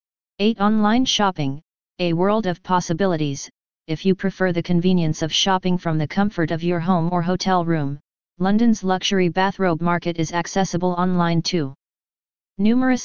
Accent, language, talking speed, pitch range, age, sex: American, English, 145 wpm, 165-190 Hz, 30-49, female